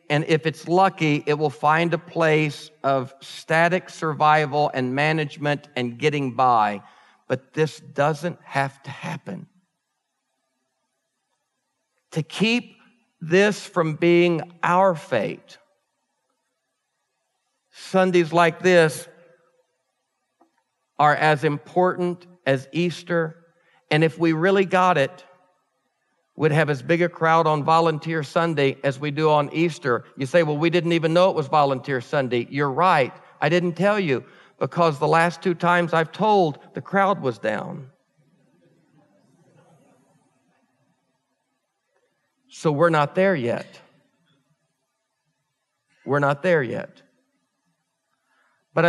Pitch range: 150-175 Hz